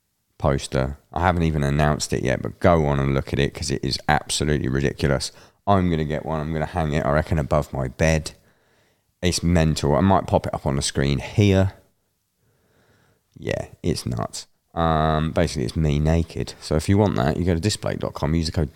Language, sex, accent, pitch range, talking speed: English, male, British, 75-95 Hz, 200 wpm